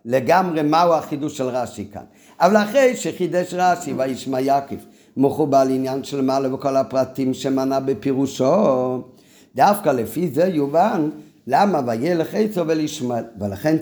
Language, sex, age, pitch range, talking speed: Hebrew, male, 50-69, 130-185 Hz, 125 wpm